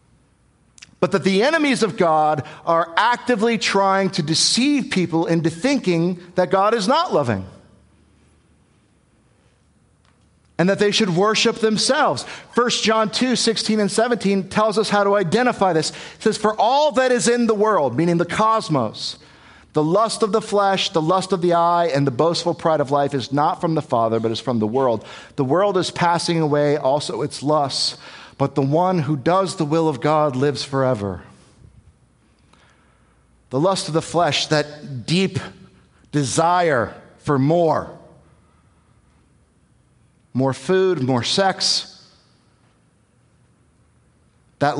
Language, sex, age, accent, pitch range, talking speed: English, male, 50-69, American, 145-200 Hz, 145 wpm